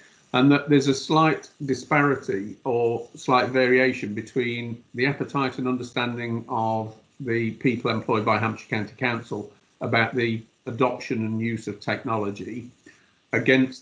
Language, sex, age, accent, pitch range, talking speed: English, male, 50-69, British, 115-130 Hz, 130 wpm